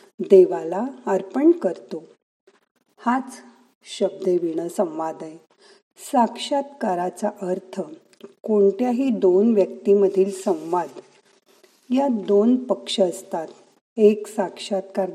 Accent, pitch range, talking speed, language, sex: native, 185-230 Hz, 75 wpm, Marathi, female